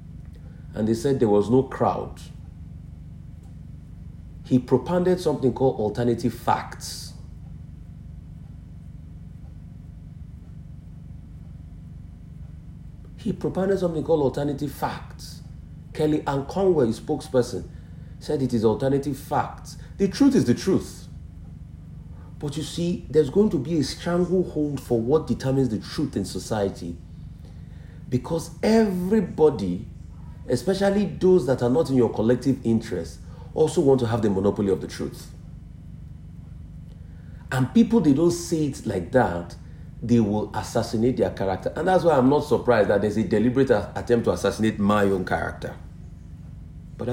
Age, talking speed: 50-69, 125 wpm